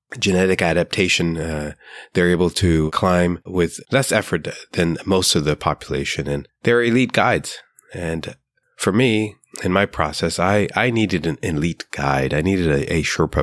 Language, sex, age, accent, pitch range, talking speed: English, male, 30-49, American, 75-90 Hz, 160 wpm